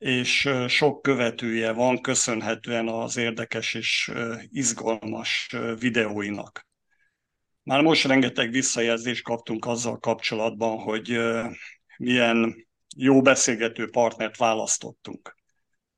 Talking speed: 85 wpm